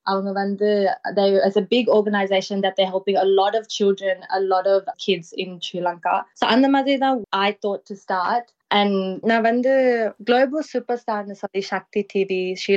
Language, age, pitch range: Tamil, 20-39, 190-220 Hz